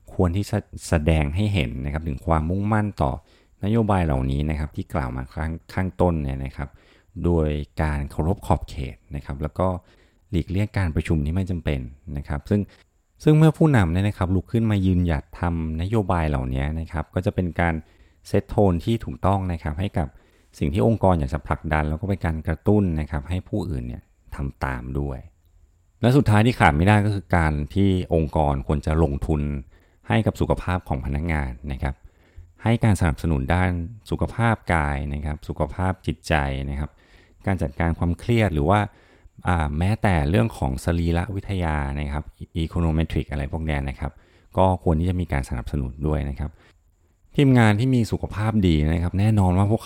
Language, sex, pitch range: Thai, male, 75-95 Hz